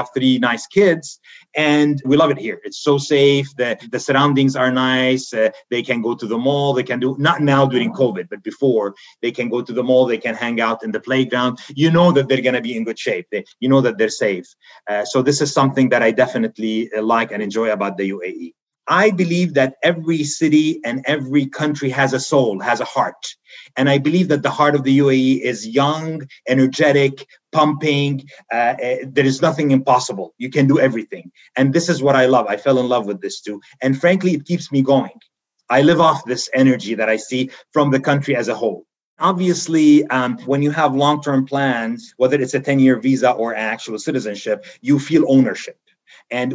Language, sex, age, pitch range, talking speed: English, male, 30-49, 125-145 Hz, 210 wpm